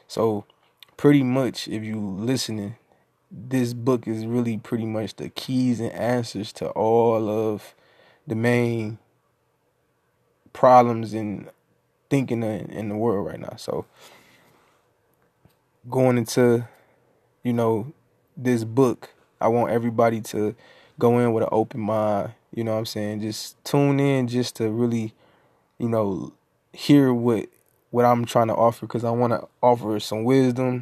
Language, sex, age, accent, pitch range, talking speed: English, male, 20-39, American, 110-120 Hz, 140 wpm